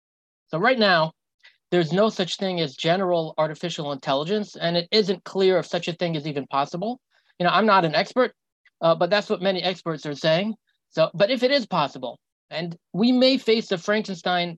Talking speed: 200 wpm